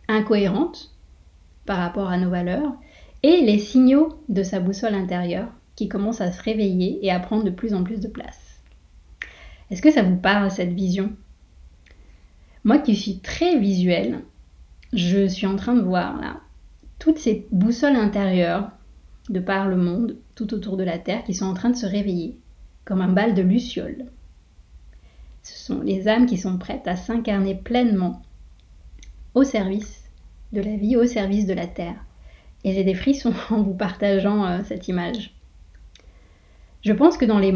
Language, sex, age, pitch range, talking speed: French, female, 20-39, 185-225 Hz, 170 wpm